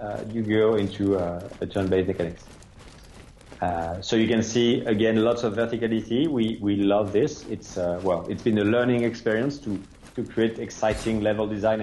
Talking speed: 180 wpm